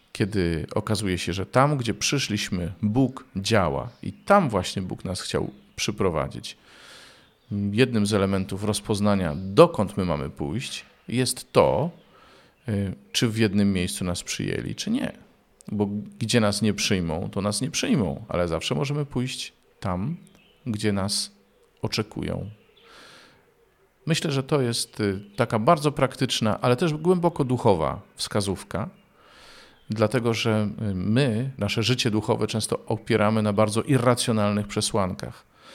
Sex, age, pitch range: male, 40-59, 100-125 Hz